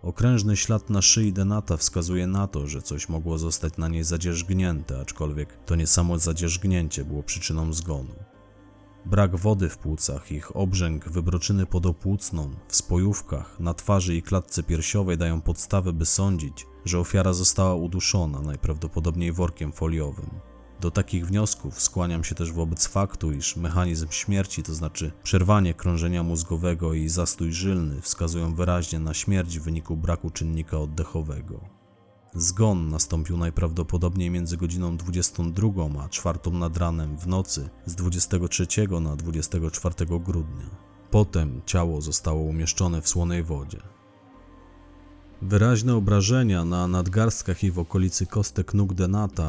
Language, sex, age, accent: Polish, male, 30-49, native